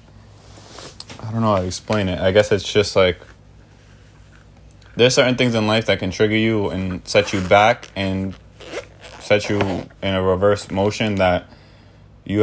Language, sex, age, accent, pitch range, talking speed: English, male, 20-39, American, 95-115 Hz, 165 wpm